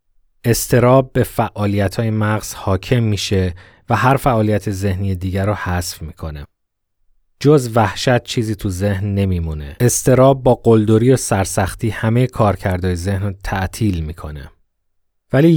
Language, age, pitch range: Persian, 30-49, 95-120 Hz